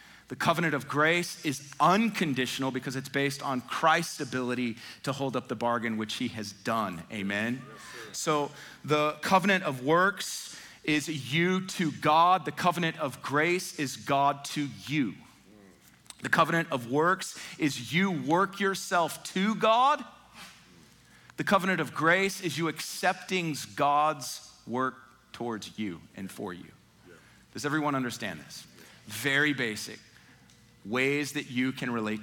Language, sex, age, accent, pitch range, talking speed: English, male, 40-59, American, 115-160 Hz, 140 wpm